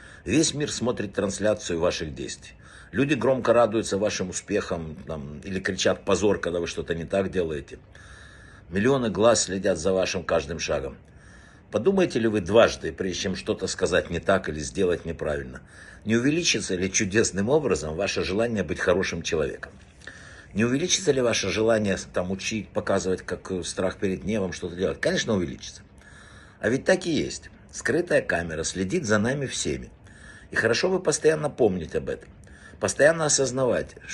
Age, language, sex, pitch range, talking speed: 60-79, Russian, male, 95-130 Hz, 150 wpm